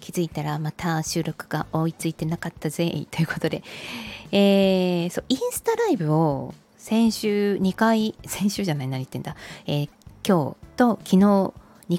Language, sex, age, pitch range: Japanese, female, 20-39, 150-215 Hz